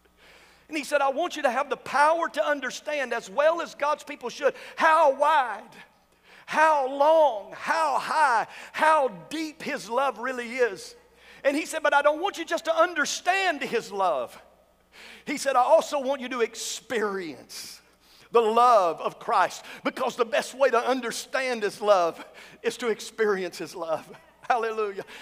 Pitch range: 215-295 Hz